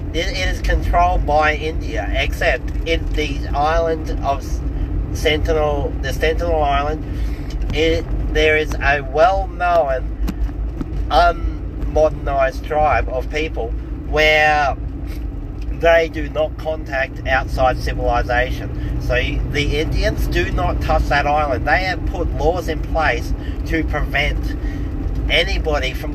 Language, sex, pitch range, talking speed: English, male, 90-145 Hz, 110 wpm